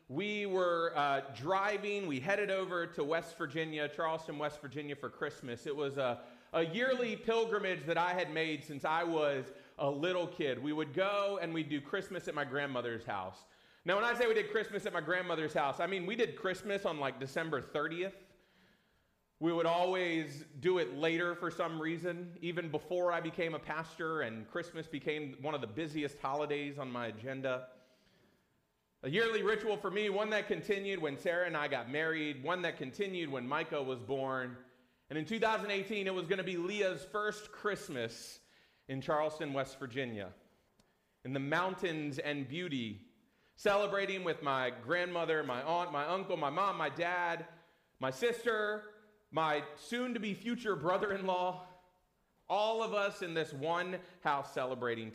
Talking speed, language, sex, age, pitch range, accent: 170 wpm, English, male, 30-49, 145-190 Hz, American